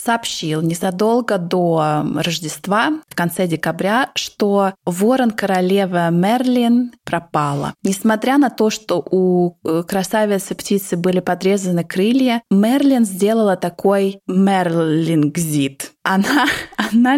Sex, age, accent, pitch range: female, 20-39, native, 170-220 Hz